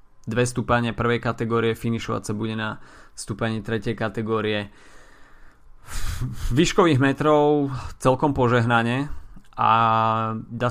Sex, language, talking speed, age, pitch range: male, Slovak, 95 wpm, 20-39, 110-125 Hz